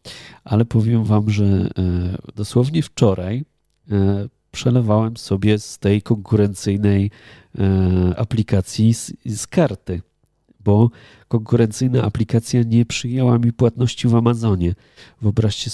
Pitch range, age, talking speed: 100-120 Hz, 30-49, 90 wpm